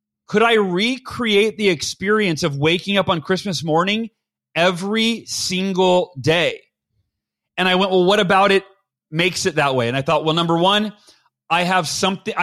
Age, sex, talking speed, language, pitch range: 30-49, male, 165 wpm, English, 170-215 Hz